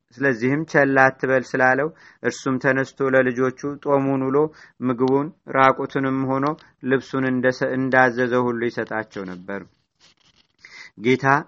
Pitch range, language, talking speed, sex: 125-140 Hz, Amharic, 100 wpm, male